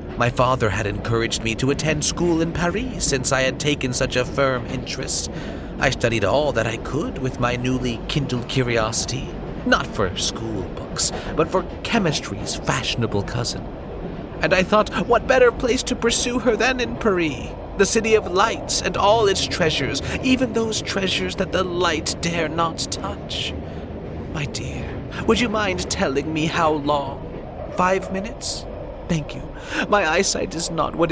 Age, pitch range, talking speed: 30-49, 115-170 Hz, 165 wpm